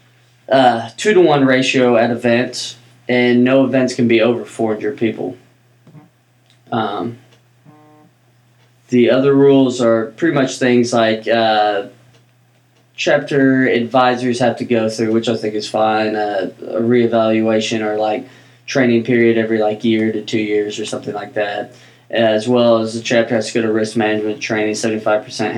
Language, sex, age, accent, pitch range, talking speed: English, male, 20-39, American, 110-125 Hz, 155 wpm